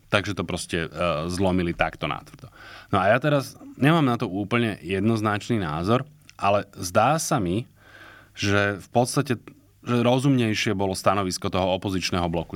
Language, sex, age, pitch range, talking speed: Slovak, male, 20-39, 95-115 Hz, 150 wpm